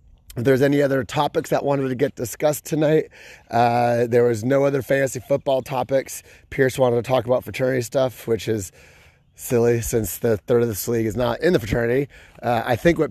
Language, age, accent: English, 30-49, American